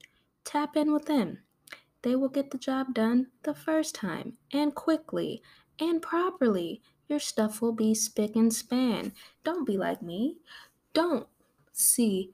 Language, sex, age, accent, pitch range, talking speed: English, female, 10-29, American, 190-270 Hz, 145 wpm